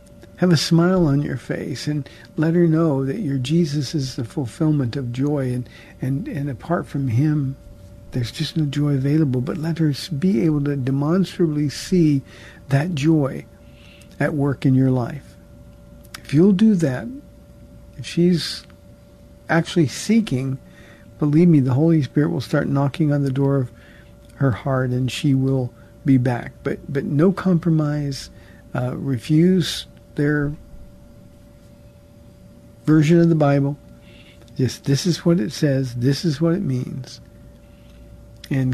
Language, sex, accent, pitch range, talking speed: English, male, American, 130-165 Hz, 145 wpm